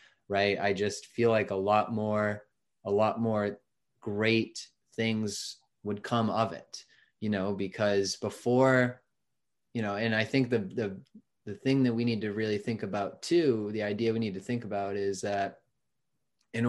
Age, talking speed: 20-39, 175 wpm